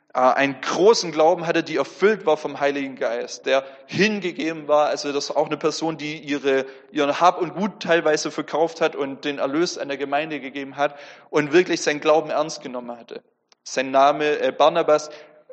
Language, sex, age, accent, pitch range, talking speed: German, male, 30-49, German, 145-180 Hz, 180 wpm